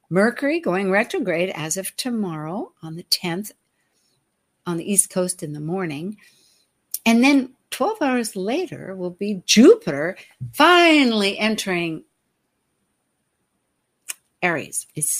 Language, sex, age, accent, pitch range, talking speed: English, female, 60-79, American, 175-245 Hz, 110 wpm